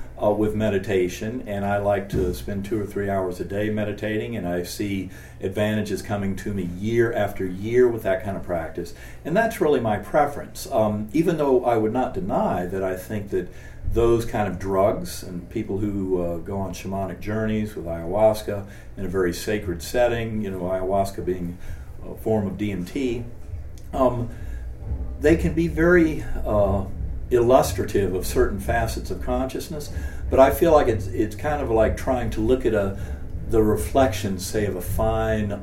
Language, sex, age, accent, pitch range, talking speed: English, male, 50-69, American, 90-110 Hz, 175 wpm